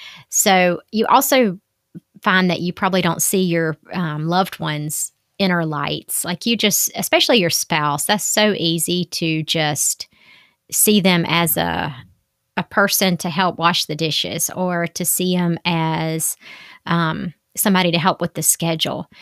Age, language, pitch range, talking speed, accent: 30-49, English, 170-210 Hz, 155 wpm, American